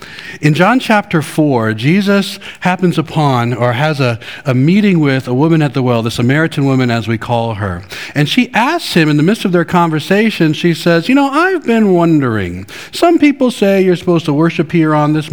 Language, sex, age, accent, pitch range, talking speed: English, male, 50-69, American, 135-185 Hz, 205 wpm